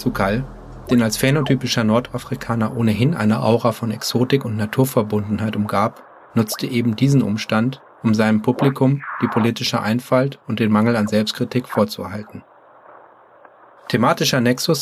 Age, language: 30-49, English